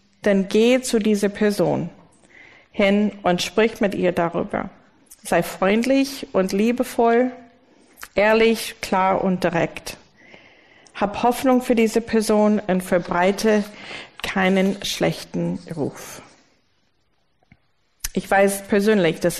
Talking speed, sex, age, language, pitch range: 100 wpm, female, 40-59, German, 185-225 Hz